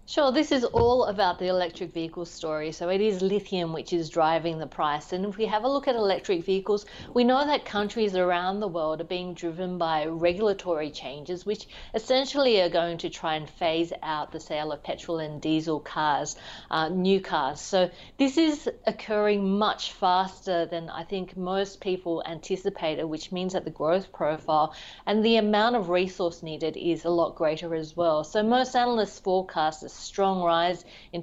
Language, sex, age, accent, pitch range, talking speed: English, female, 40-59, Australian, 165-200 Hz, 185 wpm